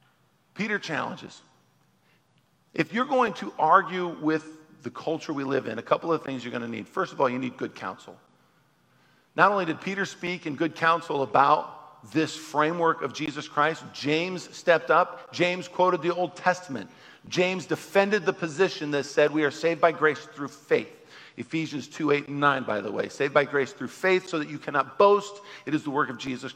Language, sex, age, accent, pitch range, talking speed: English, male, 50-69, American, 135-175 Hz, 195 wpm